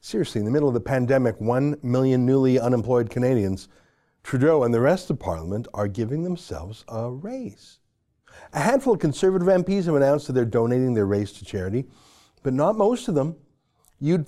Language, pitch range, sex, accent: English, 115-145 Hz, male, American